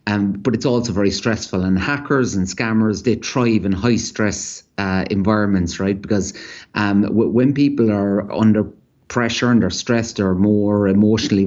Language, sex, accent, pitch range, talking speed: English, male, Irish, 100-120 Hz, 160 wpm